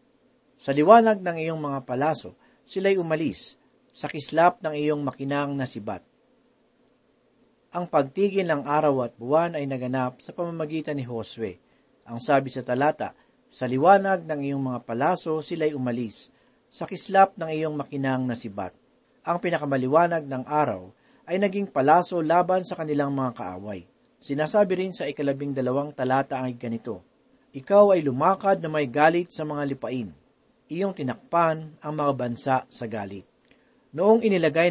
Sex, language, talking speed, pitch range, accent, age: male, Filipino, 140 wpm, 135-180 Hz, native, 40-59